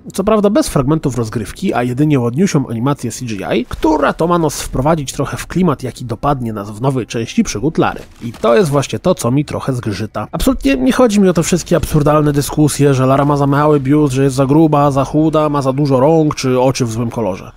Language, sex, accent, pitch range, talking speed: Polish, male, native, 130-190 Hz, 220 wpm